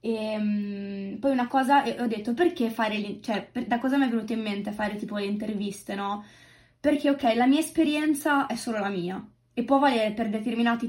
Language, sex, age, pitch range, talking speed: Italian, female, 20-39, 205-250 Hz, 215 wpm